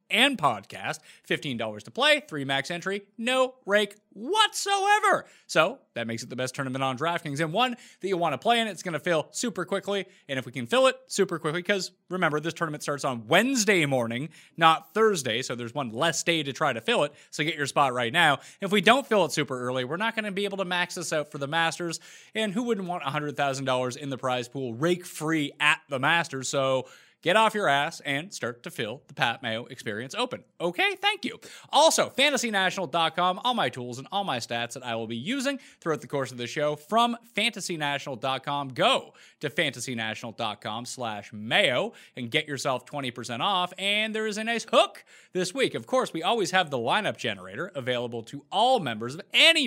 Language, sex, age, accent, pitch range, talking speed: English, male, 30-49, American, 135-205 Hz, 210 wpm